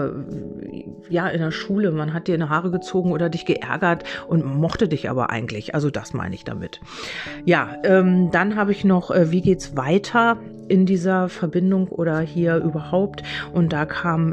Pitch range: 150-180 Hz